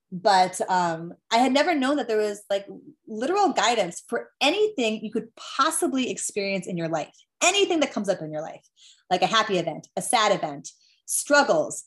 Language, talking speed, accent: English, 180 wpm, American